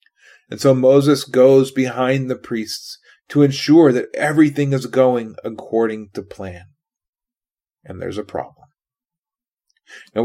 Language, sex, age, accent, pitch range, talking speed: English, male, 30-49, American, 130-210 Hz, 125 wpm